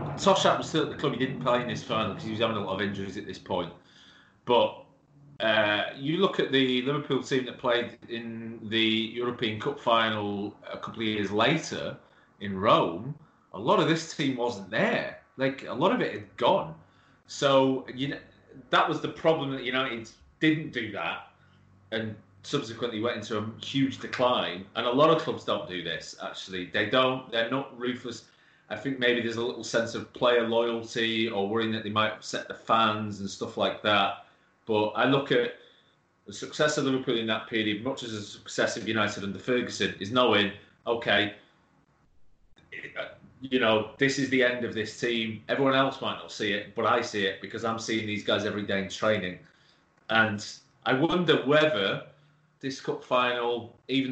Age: 30-49